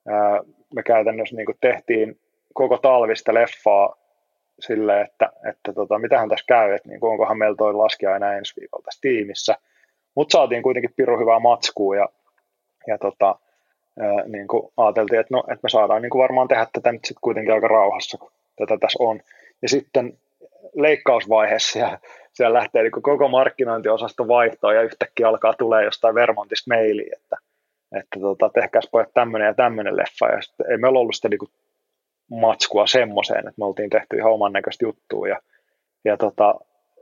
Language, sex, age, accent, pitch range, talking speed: Finnish, male, 20-39, native, 110-130 Hz, 160 wpm